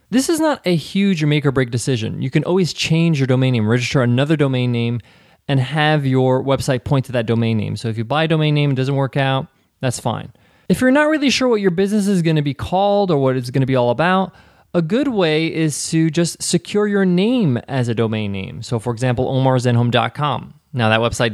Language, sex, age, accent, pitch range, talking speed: English, male, 20-39, American, 125-175 Hz, 230 wpm